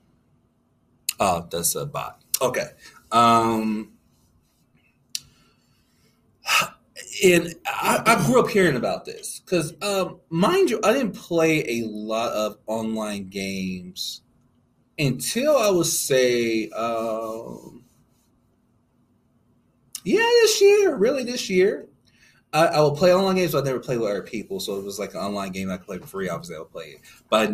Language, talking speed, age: English, 150 wpm, 30-49